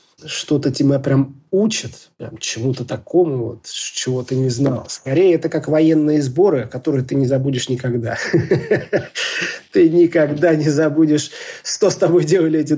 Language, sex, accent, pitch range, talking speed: Russian, male, native, 125-150 Hz, 140 wpm